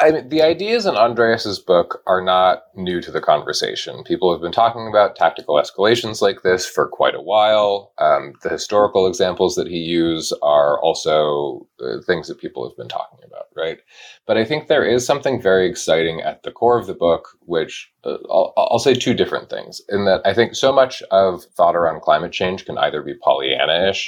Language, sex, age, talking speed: English, male, 30-49, 200 wpm